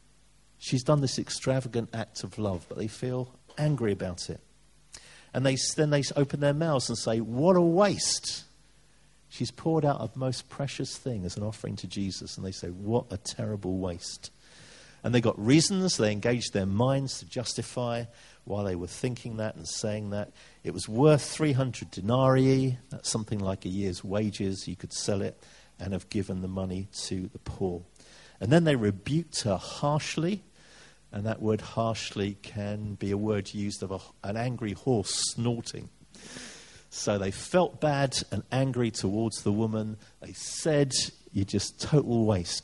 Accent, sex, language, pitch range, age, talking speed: British, male, English, 95-130 Hz, 50-69, 170 wpm